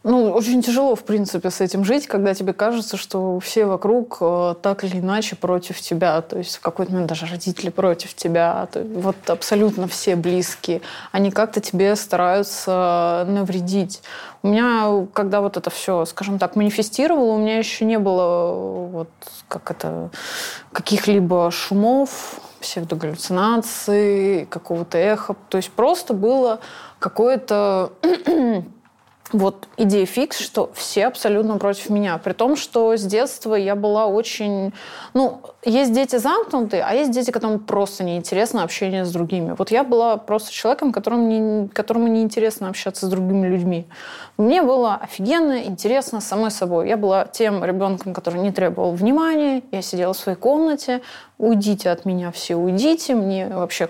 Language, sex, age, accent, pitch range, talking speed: Russian, female, 20-39, native, 185-225 Hz, 145 wpm